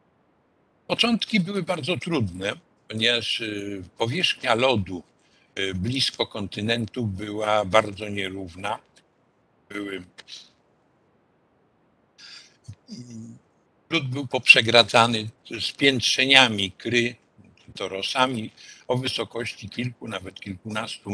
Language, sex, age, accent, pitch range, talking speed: Polish, male, 60-79, native, 110-140 Hz, 70 wpm